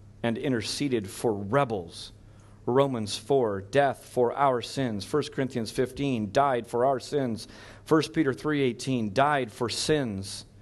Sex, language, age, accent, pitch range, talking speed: male, English, 40-59, American, 105-135 Hz, 135 wpm